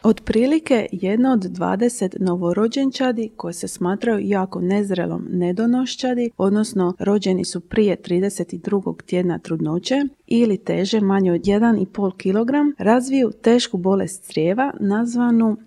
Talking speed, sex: 110 wpm, female